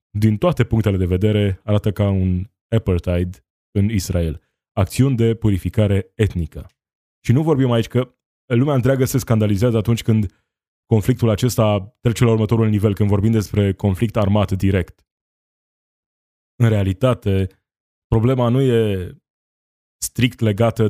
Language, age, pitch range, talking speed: Romanian, 20-39, 95-115 Hz, 130 wpm